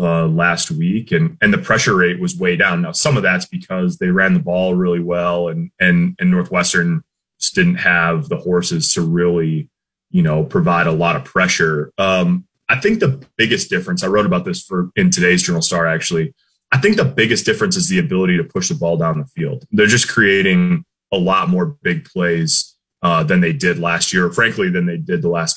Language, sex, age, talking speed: English, male, 30-49, 215 wpm